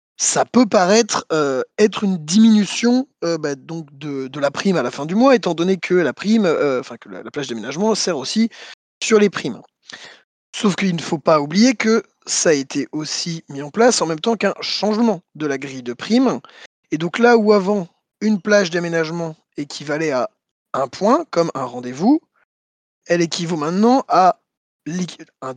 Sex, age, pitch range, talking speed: male, 20-39, 150-215 Hz, 185 wpm